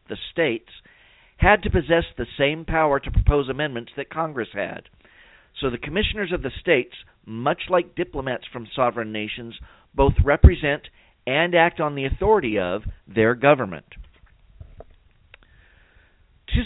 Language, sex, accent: English, male, American